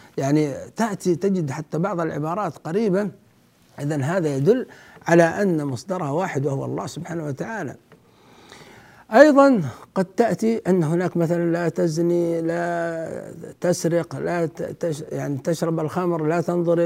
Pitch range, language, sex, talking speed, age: 160-205 Hz, Arabic, male, 120 wpm, 60-79